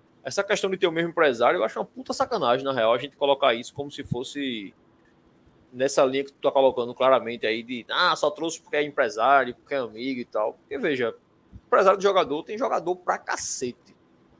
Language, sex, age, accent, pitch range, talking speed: Portuguese, male, 20-39, Brazilian, 135-195 Hz, 210 wpm